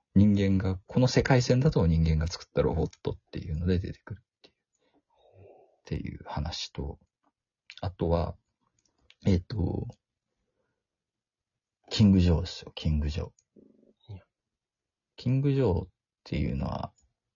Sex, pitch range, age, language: male, 85-120 Hz, 40-59, Japanese